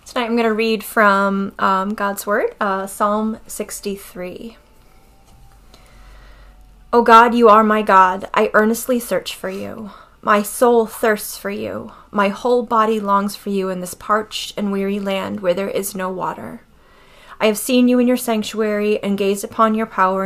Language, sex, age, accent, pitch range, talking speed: English, female, 20-39, American, 195-230 Hz, 170 wpm